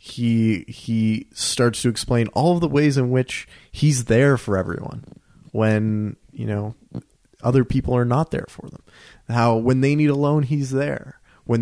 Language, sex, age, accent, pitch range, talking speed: English, male, 30-49, American, 100-130 Hz, 175 wpm